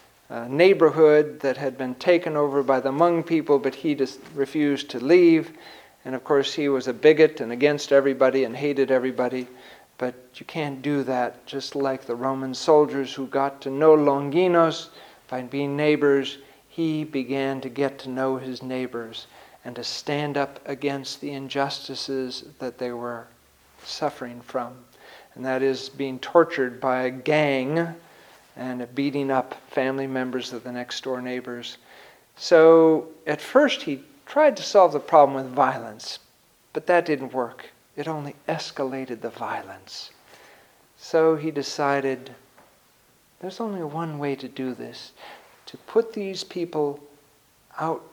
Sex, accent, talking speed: male, American, 150 wpm